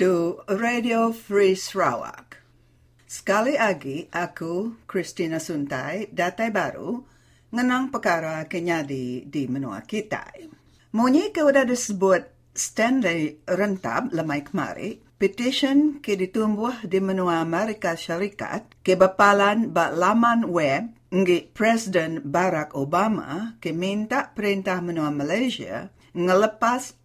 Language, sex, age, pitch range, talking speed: English, female, 50-69, 160-220 Hz, 100 wpm